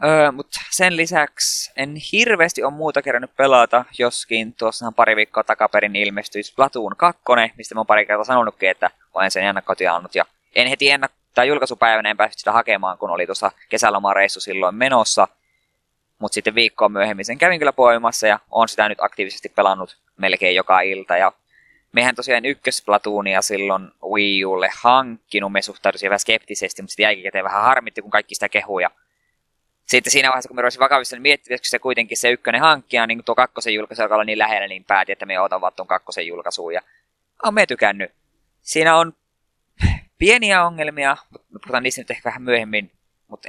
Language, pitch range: Finnish, 105-135 Hz